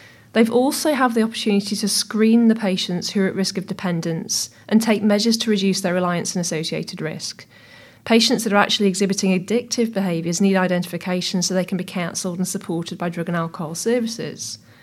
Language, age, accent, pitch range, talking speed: English, 30-49, British, 180-215 Hz, 185 wpm